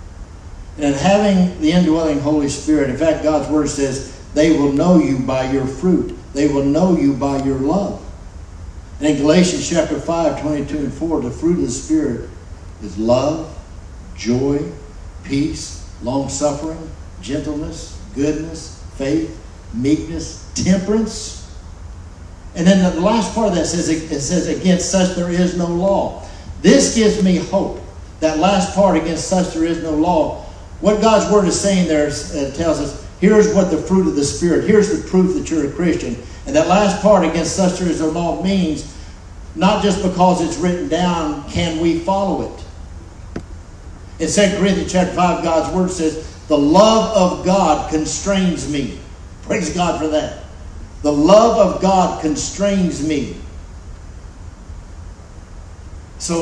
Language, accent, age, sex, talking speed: English, American, 60-79, male, 155 wpm